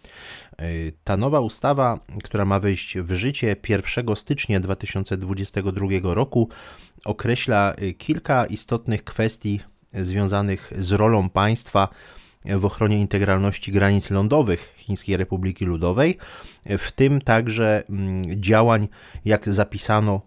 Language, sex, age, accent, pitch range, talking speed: Polish, male, 30-49, native, 90-105 Hz, 100 wpm